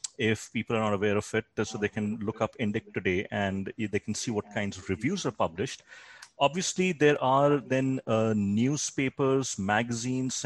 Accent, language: Indian, English